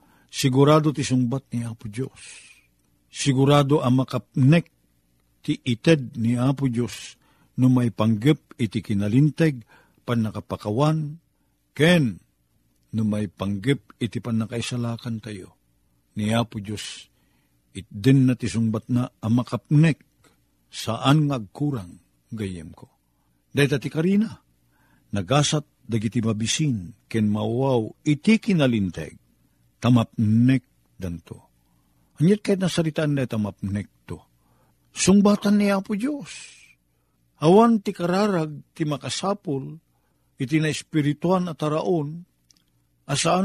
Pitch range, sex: 100-160 Hz, male